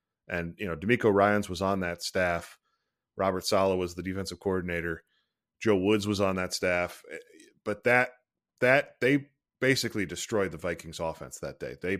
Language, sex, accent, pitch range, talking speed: English, male, American, 90-110 Hz, 165 wpm